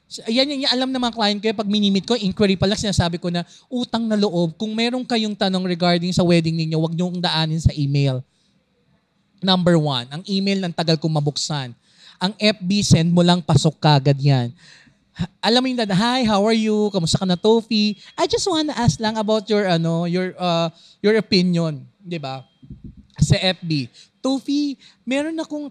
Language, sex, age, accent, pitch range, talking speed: Filipino, male, 20-39, native, 165-220 Hz, 180 wpm